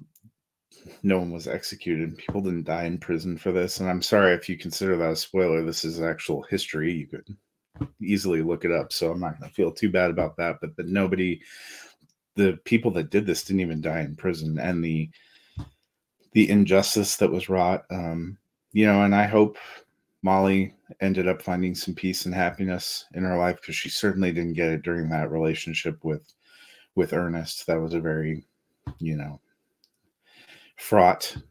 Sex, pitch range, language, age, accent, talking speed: male, 85-100 Hz, English, 30-49, American, 180 wpm